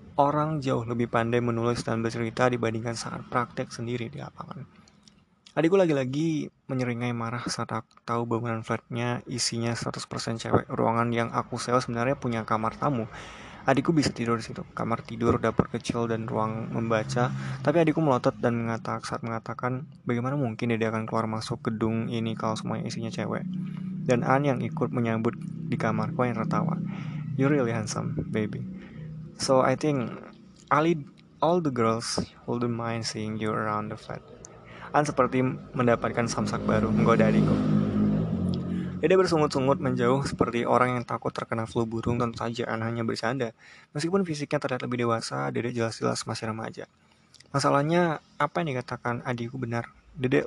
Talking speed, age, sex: 155 wpm, 20-39, male